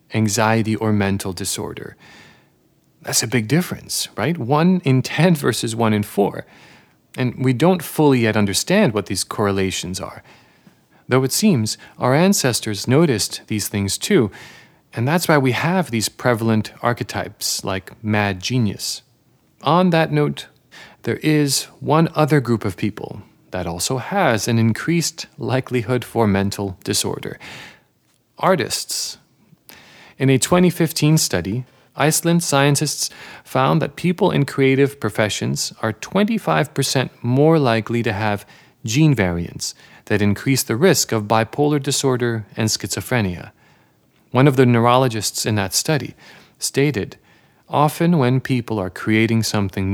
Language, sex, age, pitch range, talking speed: English, male, 40-59, 105-140 Hz, 130 wpm